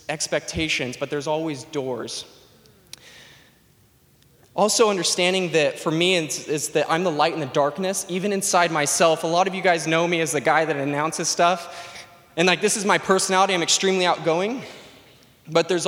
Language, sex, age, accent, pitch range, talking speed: English, male, 20-39, American, 145-180 Hz, 170 wpm